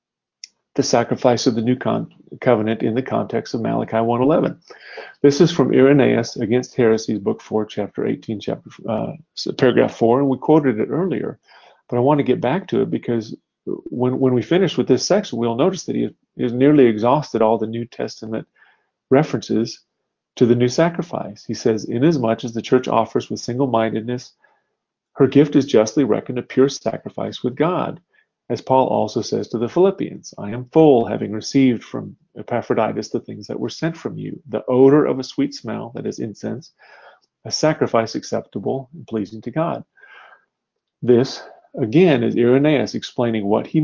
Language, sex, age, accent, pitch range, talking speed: English, male, 40-59, American, 115-140 Hz, 175 wpm